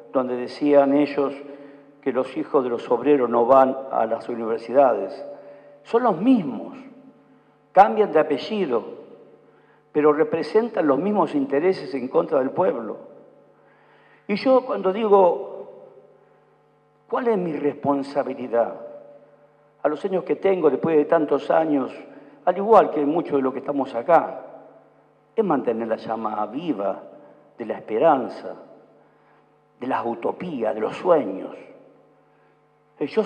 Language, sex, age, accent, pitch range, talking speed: Spanish, male, 50-69, Argentinian, 145-210 Hz, 125 wpm